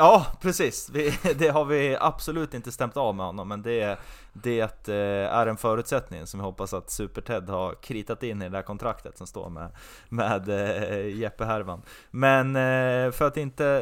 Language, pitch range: Swedish, 100-130 Hz